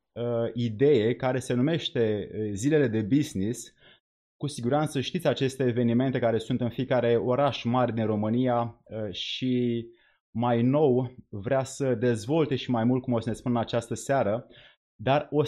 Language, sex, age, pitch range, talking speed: Romanian, male, 30-49, 120-145 Hz, 150 wpm